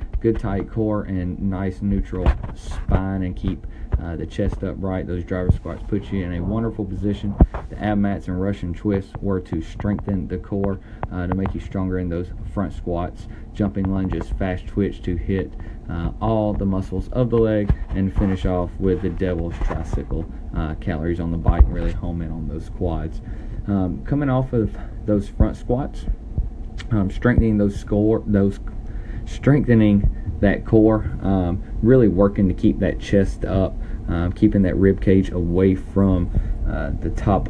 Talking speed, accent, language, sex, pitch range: 170 wpm, American, English, male, 90-105 Hz